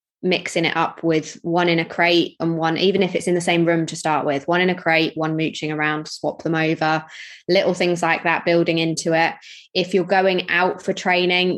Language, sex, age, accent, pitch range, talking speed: English, female, 20-39, British, 165-180 Hz, 225 wpm